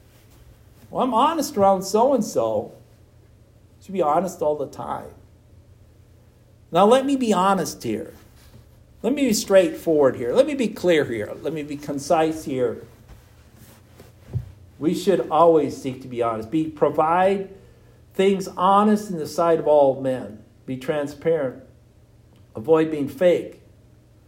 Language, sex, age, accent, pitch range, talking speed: English, male, 60-79, American, 120-180 Hz, 135 wpm